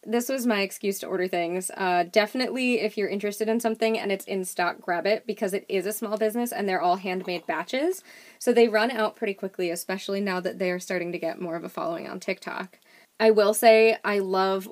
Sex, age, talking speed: female, 20-39, 230 wpm